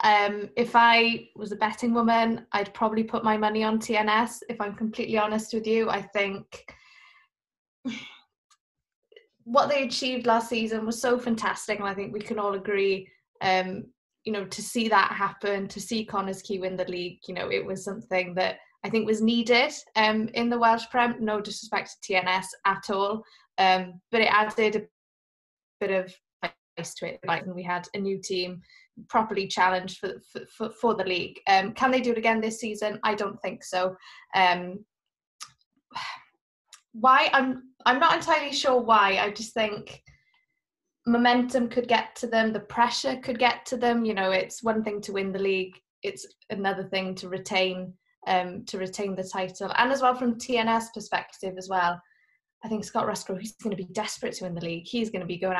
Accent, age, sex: British, 20-39, female